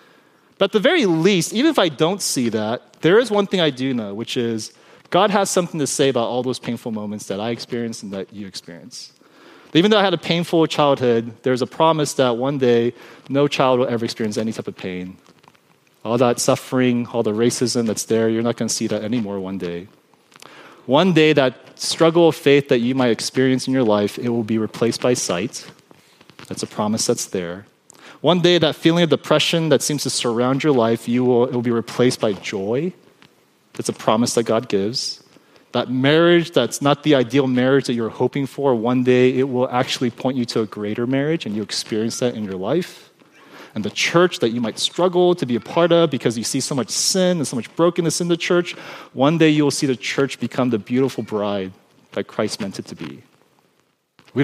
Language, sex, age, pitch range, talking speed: English, male, 30-49, 115-155 Hz, 215 wpm